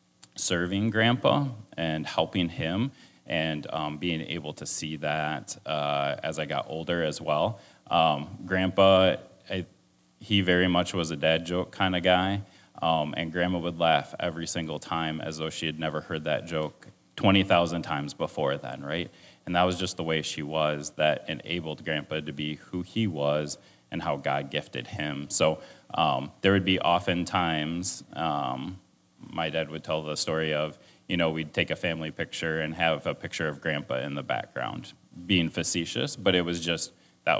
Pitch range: 75-90 Hz